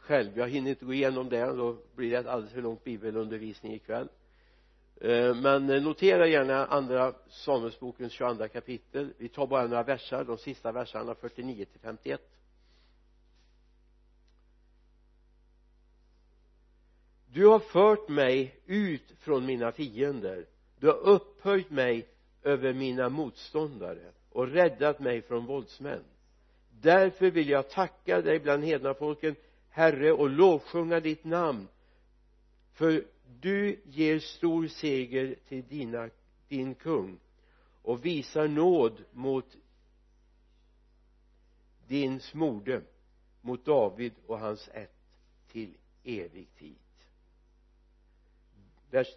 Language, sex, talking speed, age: Swedish, male, 110 wpm, 60-79